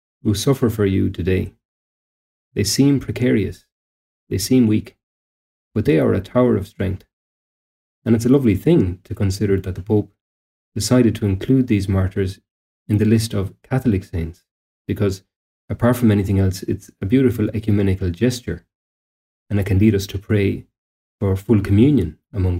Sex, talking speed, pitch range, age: male, 160 wpm, 90-110 Hz, 30-49